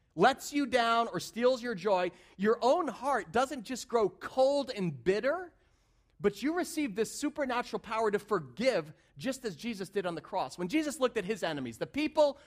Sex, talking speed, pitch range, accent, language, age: male, 190 wpm, 160-230 Hz, American, English, 40-59